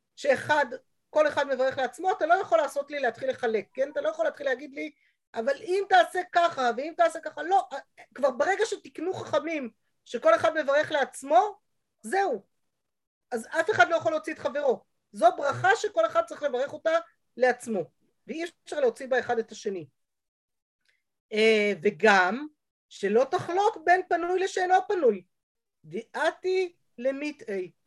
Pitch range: 230-330 Hz